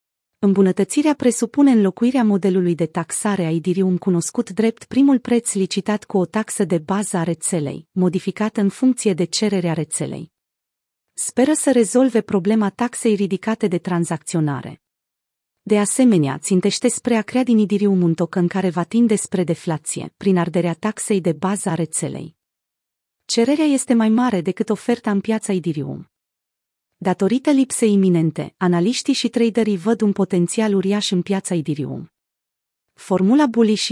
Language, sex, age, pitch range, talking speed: Romanian, female, 30-49, 175-225 Hz, 145 wpm